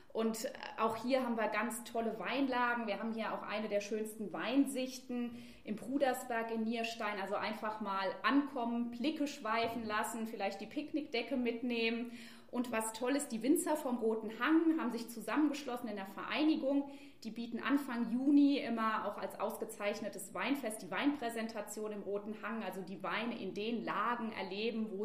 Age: 20-39